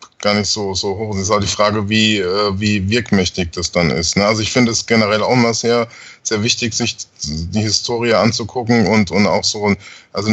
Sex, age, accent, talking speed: male, 20-39, German, 205 wpm